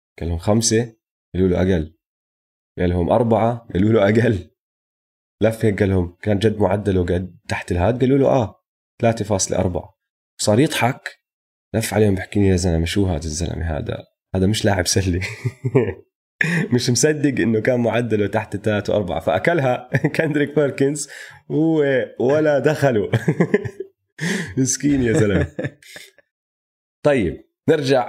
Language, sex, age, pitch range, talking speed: Arabic, male, 20-39, 95-130 Hz, 120 wpm